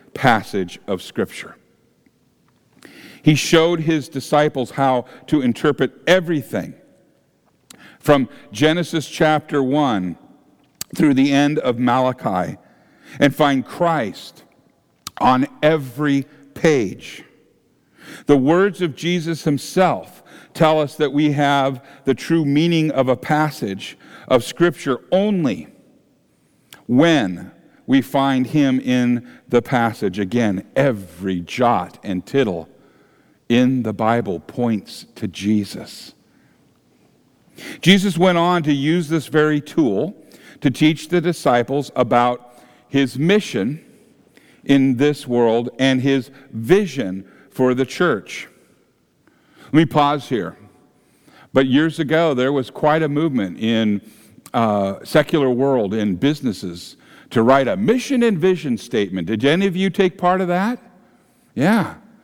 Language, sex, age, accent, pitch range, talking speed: English, male, 50-69, American, 125-165 Hz, 115 wpm